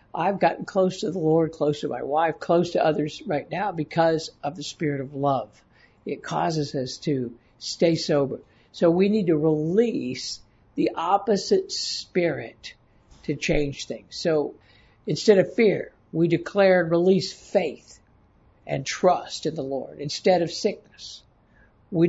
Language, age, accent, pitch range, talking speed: English, 60-79, American, 150-190 Hz, 150 wpm